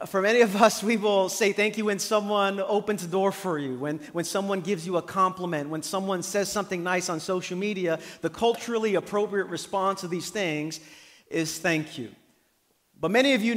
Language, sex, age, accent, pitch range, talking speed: English, male, 40-59, American, 160-200 Hz, 200 wpm